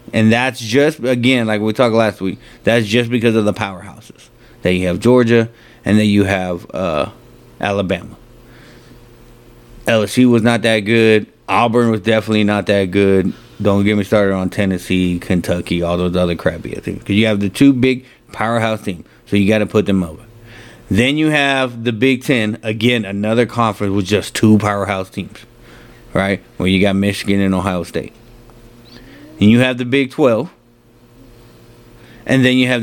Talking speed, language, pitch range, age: 175 wpm, English, 100-125 Hz, 30-49